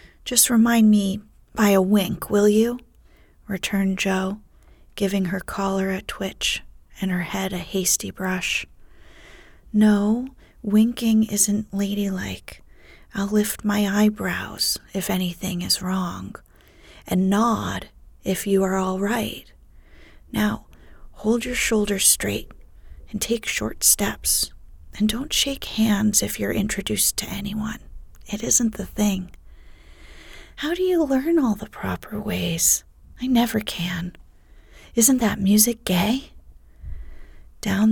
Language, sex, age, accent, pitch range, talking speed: English, female, 30-49, American, 185-220 Hz, 125 wpm